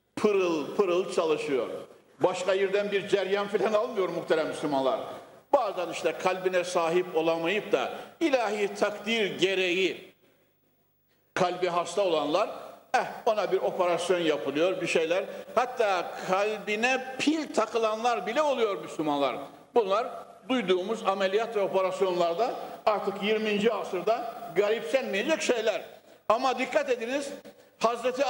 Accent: native